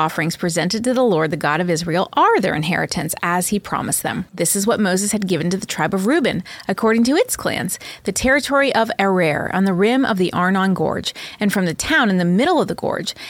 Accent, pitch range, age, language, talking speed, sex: American, 180-255 Hz, 30-49, English, 235 wpm, female